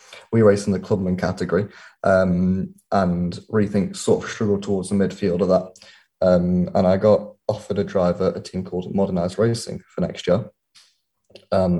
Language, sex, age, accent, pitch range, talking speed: English, male, 20-39, British, 90-105 Hz, 170 wpm